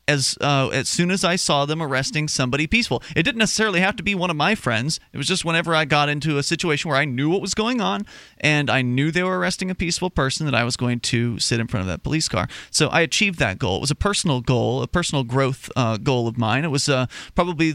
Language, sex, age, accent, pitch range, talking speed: English, male, 30-49, American, 130-180 Hz, 265 wpm